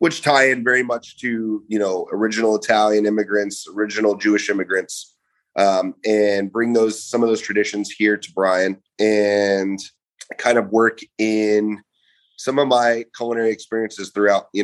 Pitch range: 100-110 Hz